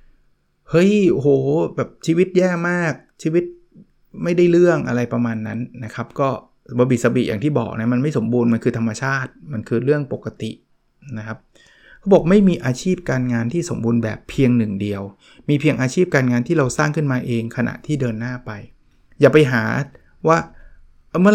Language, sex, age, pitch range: Thai, male, 20-39, 115-150 Hz